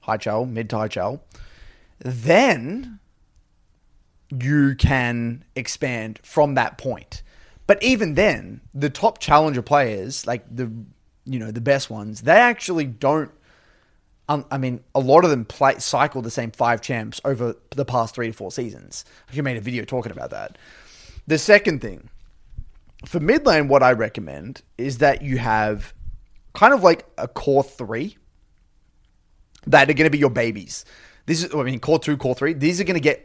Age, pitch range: 20-39, 115-150 Hz